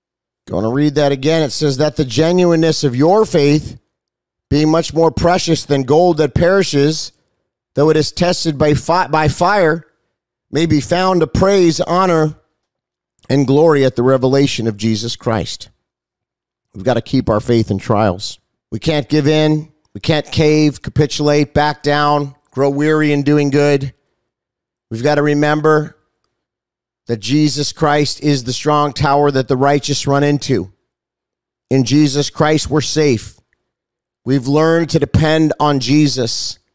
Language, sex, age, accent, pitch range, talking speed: English, male, 40-59, American, 135-160 Hz, 150 wpm